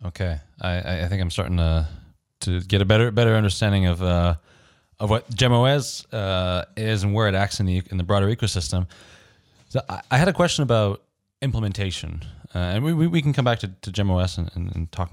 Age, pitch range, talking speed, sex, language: 20-39, 90-115 Hz, 200 wpm, male, English